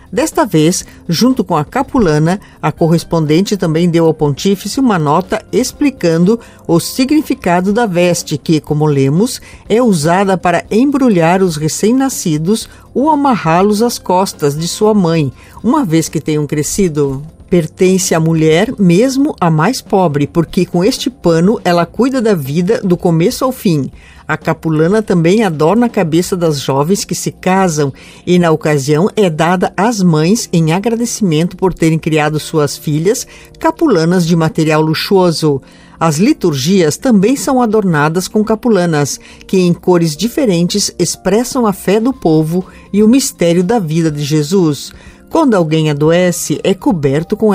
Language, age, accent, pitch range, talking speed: Portuguese, 50-69, Brazilian, 160-215 Hz, 150 wpm